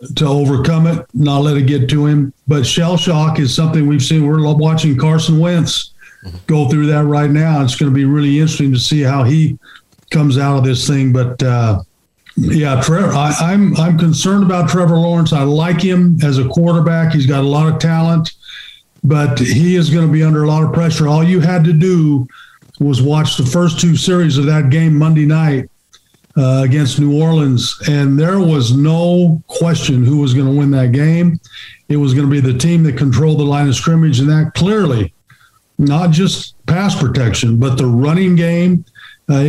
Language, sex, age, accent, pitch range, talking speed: English, male, 50-69, American, 140-165 Hz, 195 wpm